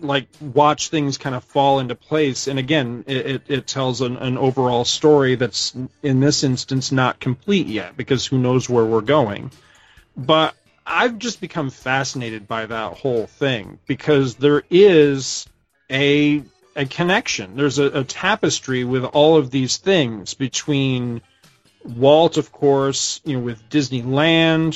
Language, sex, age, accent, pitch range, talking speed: English, male, 40-59, American, 120-145 Hz, 155 wpm